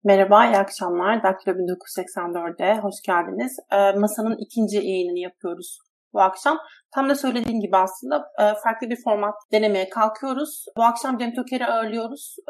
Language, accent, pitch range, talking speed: Turkish, native, 205-245 Hz, 150 wpm